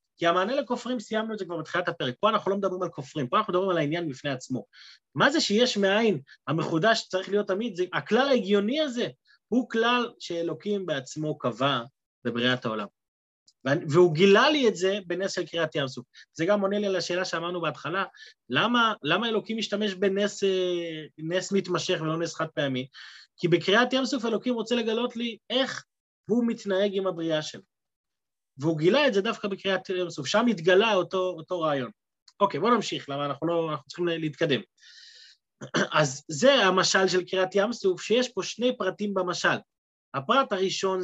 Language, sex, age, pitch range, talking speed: Hebrew, male, 30-49, 165-215 Hz, 165 wpm